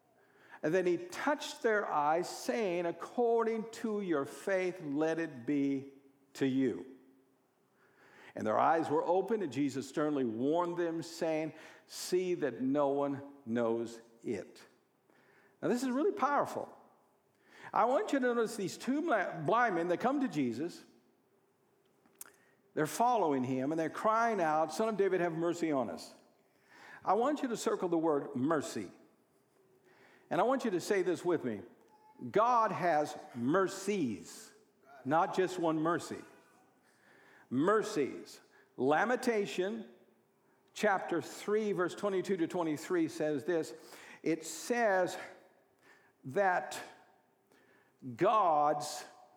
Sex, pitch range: male, 150-225 Hz